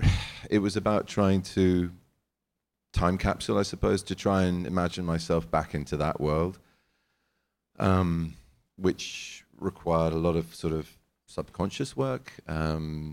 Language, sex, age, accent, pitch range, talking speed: English, male, 30-49, British, 75-90 Hz, 135 wpm